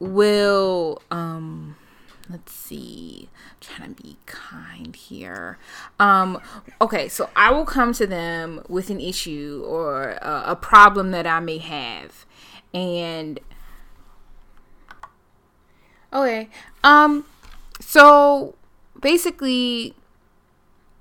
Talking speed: 95 wpm